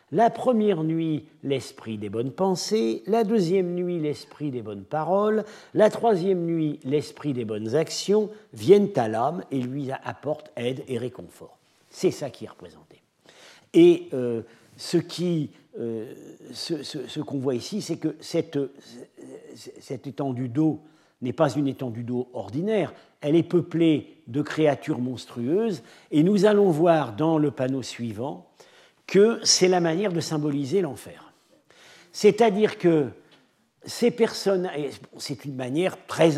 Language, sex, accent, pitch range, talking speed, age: French, male, French, 130-180 Hz, 145 wpm, 50-69